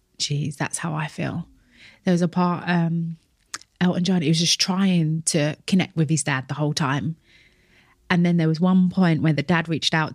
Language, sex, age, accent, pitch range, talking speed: English, female, 30-49, British, 140-165 Hz, 205 wpm